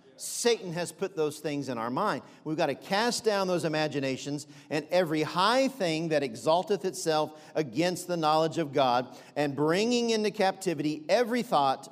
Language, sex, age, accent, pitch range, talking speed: English, male, 50-69, American, 140-180 Hz, 165 wpm